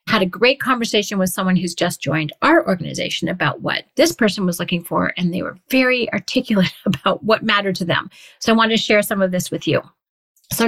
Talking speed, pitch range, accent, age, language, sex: 220 wpm, 180-240 Hz, American, 40-59, English, female